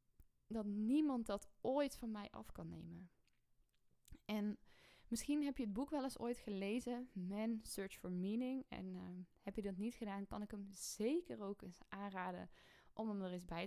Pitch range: 190-225 Hz